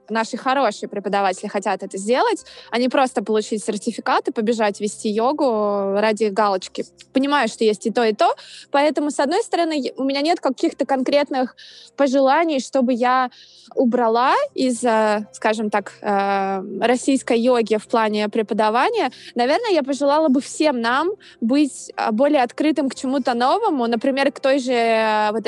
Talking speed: 145 wpm